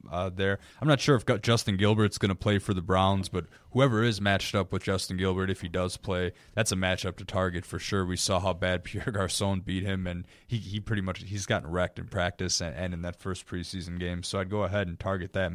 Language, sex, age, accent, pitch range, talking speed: English, male, 20-39, American, 95-120 Hz, 250 wpm